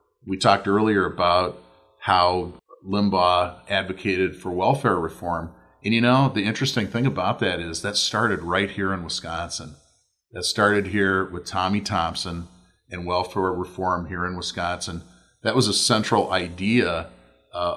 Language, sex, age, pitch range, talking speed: English, male, 40-59, 90-105 Hz, 145 wpm